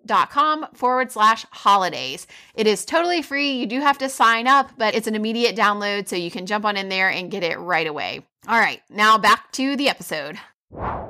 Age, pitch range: 20-39, 205-265 Hz